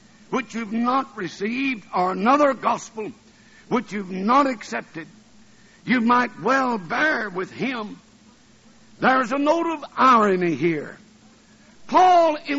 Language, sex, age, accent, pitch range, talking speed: English, male, 60-79, American, 225-300 Hz, 115 wpm